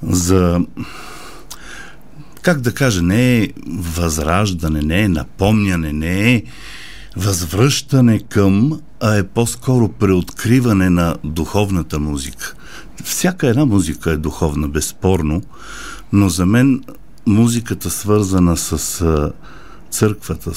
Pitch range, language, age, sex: 80-100 Hz, Bulgarian, 50-69, male